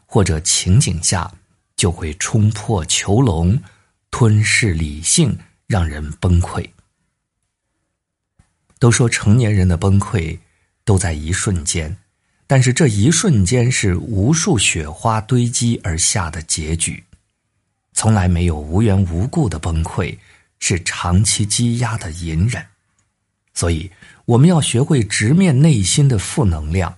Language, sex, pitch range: Chinese, male, 85-115 Hz